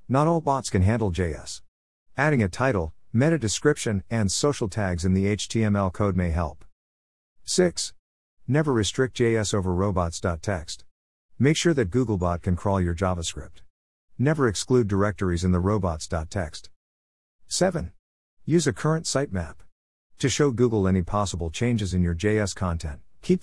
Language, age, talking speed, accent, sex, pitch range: English, 50-69, 145 wpm, American, male, 90-115 Hz